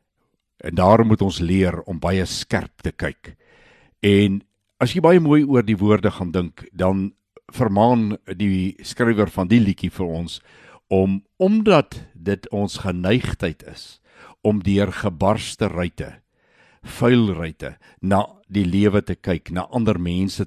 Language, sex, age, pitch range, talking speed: Swedish, male, 60-79, 90-115 Hz, 145 wpm